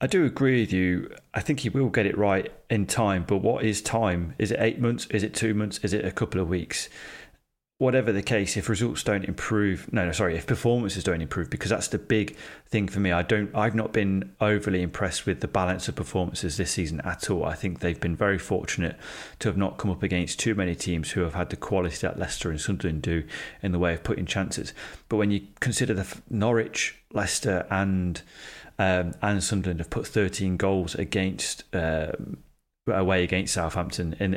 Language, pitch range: English, 90-110 Hz